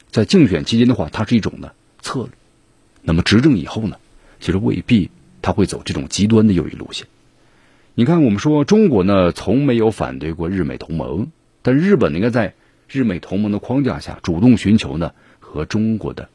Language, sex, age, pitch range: Chinese, male, 50-69, 100-130 Hz